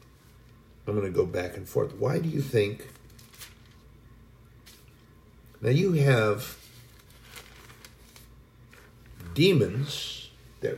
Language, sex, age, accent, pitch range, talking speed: English, male, 50-69, American, 110-135 Hz, 90 wpm